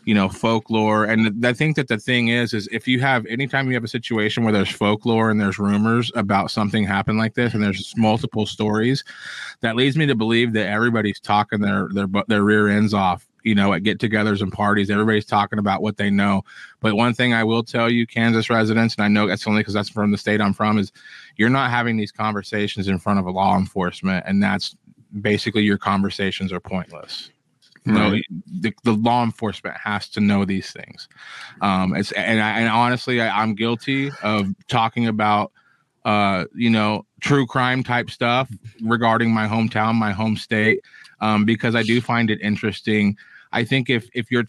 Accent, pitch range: American, 100-115 Hz